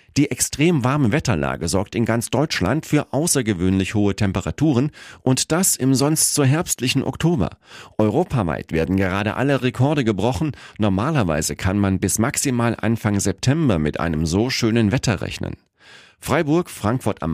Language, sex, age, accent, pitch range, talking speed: German, male, 40-59, German, 90-130 Hz, 140 wpm